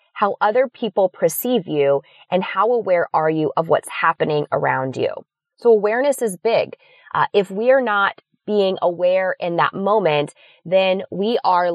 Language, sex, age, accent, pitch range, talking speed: English, female, 20-39, American, 155-205 Hz, 165 wpm